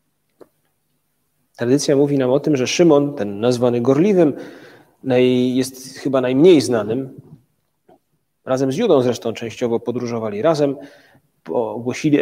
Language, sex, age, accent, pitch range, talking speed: Polish, male, 40-59, native, 125-150 Hz, 110 wpm